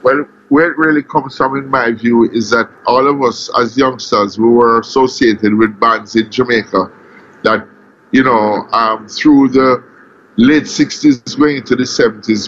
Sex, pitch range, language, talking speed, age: male, 115-145 Hz, English, 170 wpm, 50-69